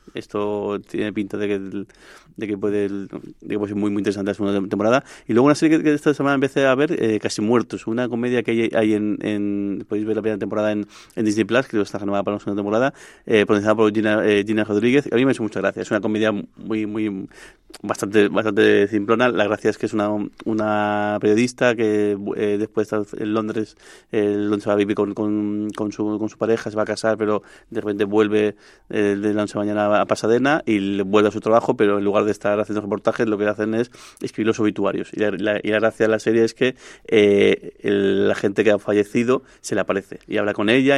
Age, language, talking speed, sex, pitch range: 30-49, Spanish, 235 wpm, male, 105-115 Hz